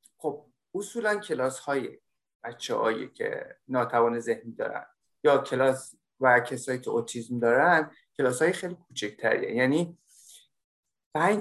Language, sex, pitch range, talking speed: Persian, male, 125-175 Hz, 105 wpm